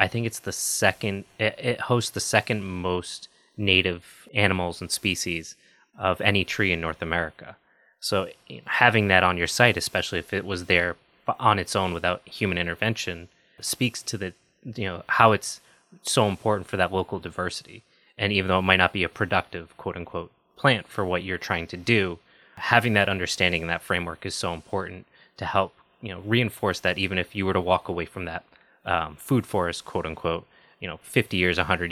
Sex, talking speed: male, 190 wpm